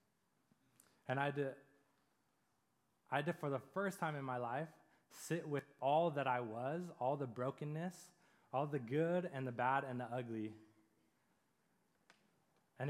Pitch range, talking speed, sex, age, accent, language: 125-160 Hz, 145 wpm, male, 20-39, American, English